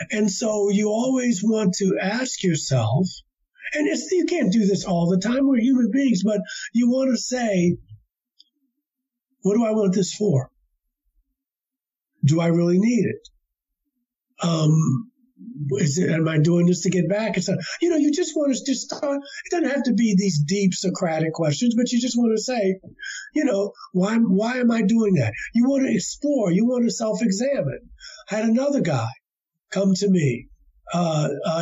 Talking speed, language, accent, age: 180 wpm, English, American, 50-69